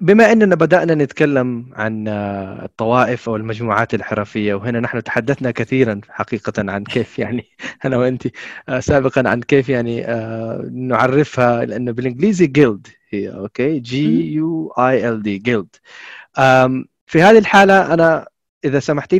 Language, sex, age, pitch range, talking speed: Arabic, male, 30-49, 110-155 Hz, 120 wpm